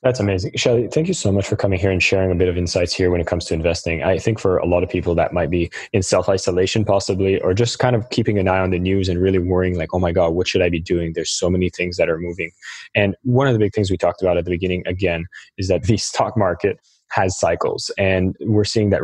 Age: 20-39